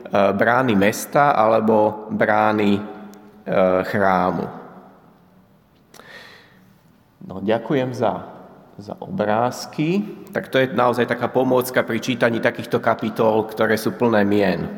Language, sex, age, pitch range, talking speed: Slovak, male, 30-49, 110-155 Hz, 100 wpm